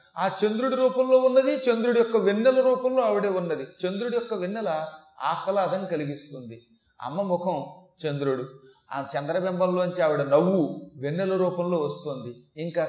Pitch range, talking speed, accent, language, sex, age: 140-205 Hz, 120 wpm, native, Telugu, male, 30-49